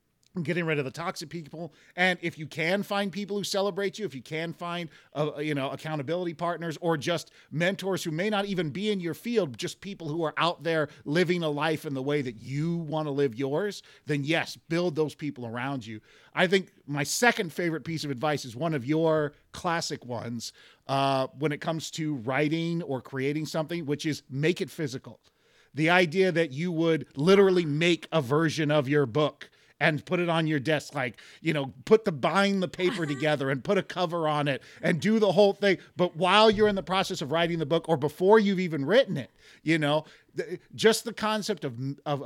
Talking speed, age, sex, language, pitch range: 215 wpm, 40-59, male, English, 145-180 Hz